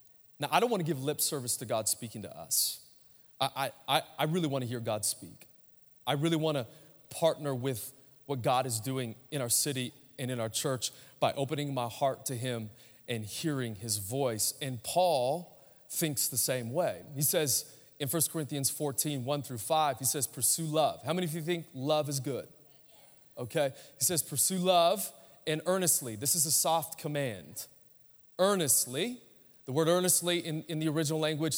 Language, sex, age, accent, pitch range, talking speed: English, male, 30-49, American, 130-165 Hz, 180 wpm